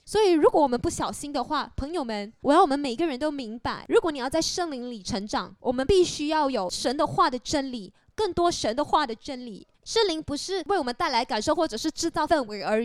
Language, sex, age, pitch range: Chinese, female, 20-39, 235-335 Hz